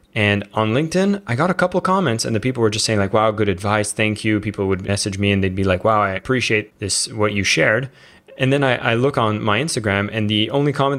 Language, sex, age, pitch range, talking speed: English, male, 20-39, 100-120 Hz, 260 wpm